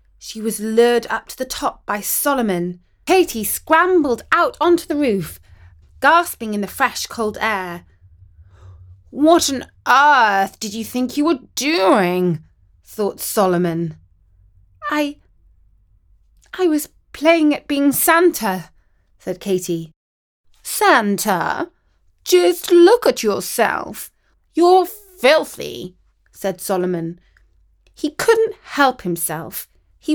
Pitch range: 175-290 Hz